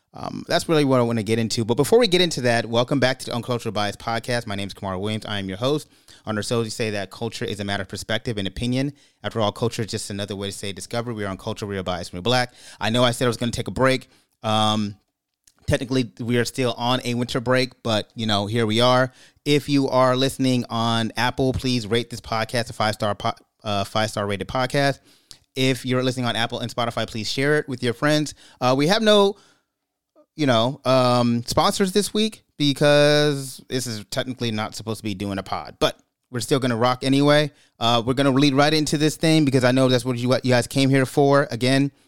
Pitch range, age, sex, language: 110-140 Hz, 30-49, male, English